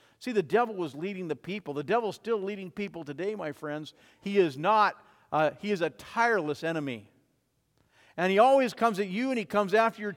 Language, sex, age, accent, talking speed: English, male, 50-69, American, 210 wpm